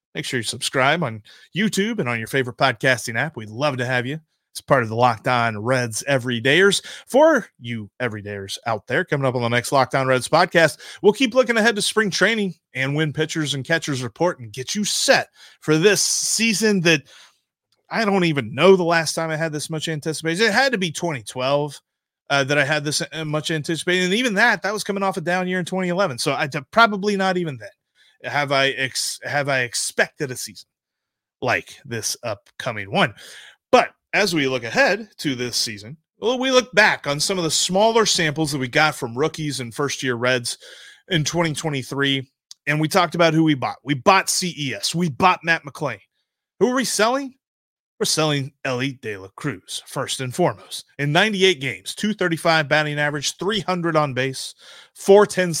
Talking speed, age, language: 195 wpm, 30-49, English